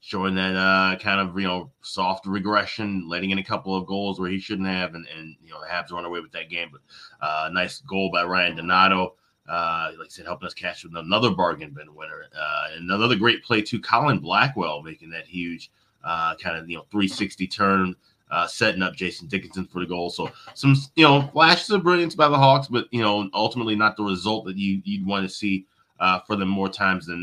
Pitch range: 90-105 Hz